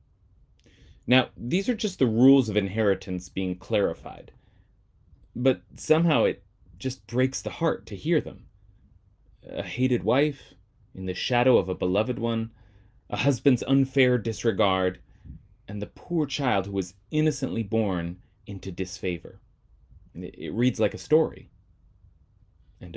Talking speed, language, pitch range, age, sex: 130 wpm, English, 95-130 Hz, 30-49, male